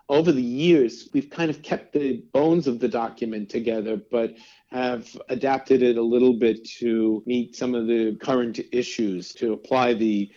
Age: 50-69